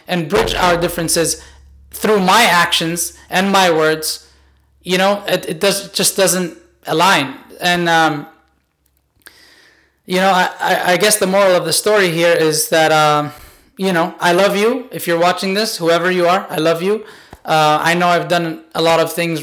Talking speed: 180 wpm